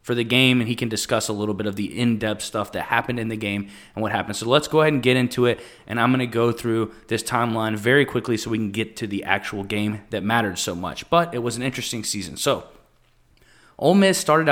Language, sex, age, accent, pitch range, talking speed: English, male, 20-39, American, 110-145 Hz, 255 wpm